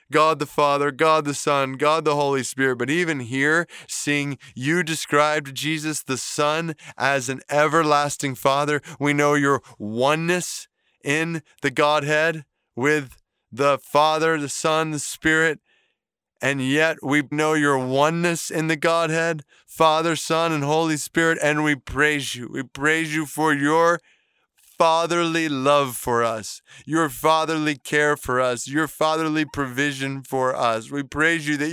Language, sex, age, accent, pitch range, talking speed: English, male, 20-39, American, 145-165 Hz, 150 wpm